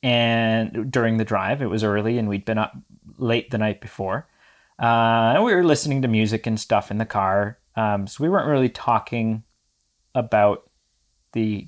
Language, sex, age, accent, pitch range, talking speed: English, male, 30-49, American, 110-135 Hz, 180 wpm